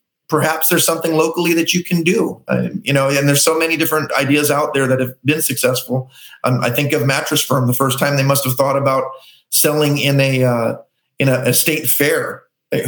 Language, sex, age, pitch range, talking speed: English, male, 40-59, 130-150 Hz, 215 wpm